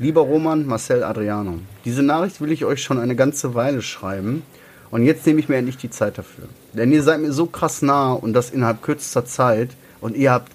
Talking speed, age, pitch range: 215 wpm, 30-49, 105-140 Hz